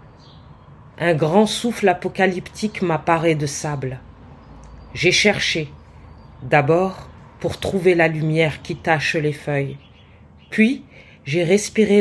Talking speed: 105 wpm